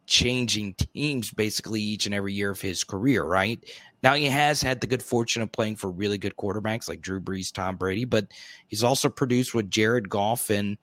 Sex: male